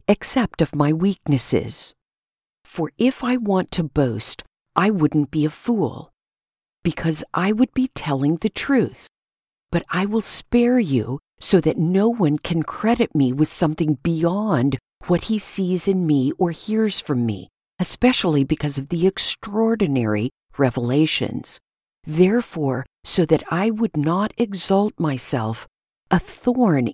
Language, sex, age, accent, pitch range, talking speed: English, female, 50-69, American, 140-200 Hz, 140 wpm